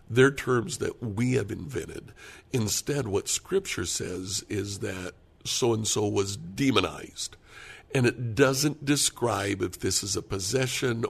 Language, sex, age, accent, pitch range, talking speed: English, male, 60-79, American, 100-125 Hz, 130 wpm